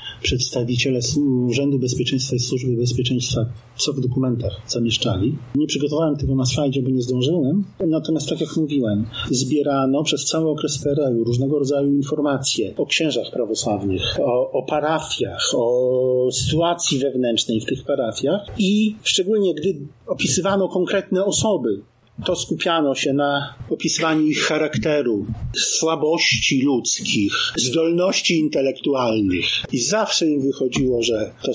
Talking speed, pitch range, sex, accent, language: 125 wpm, 120-160 Hz, male, native, Polish